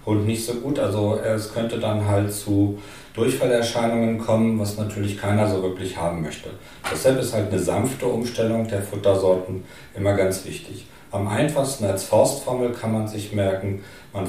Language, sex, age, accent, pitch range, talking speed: German, male, 40-59, German, 95-115 Hz, 165 wpm